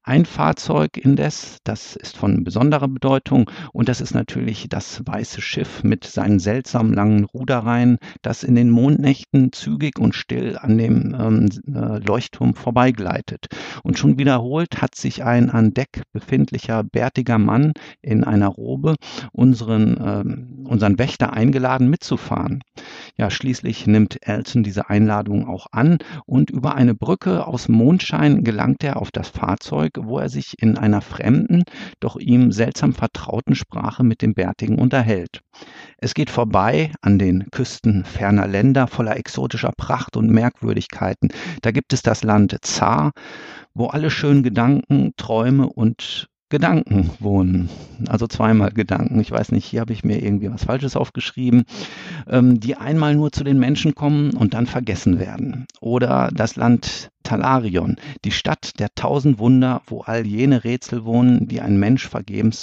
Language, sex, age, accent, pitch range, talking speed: German, male, 50-69, German, 105-130 Hz, 150 wpm